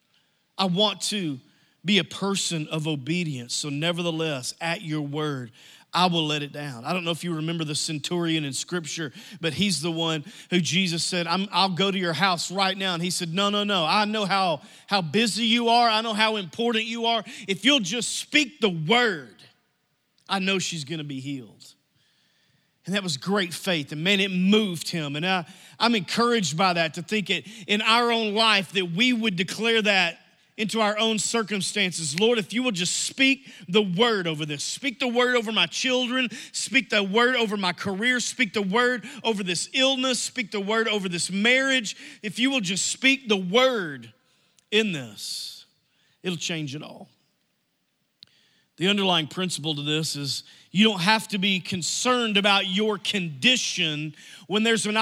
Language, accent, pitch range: English, American, 165-220 Hz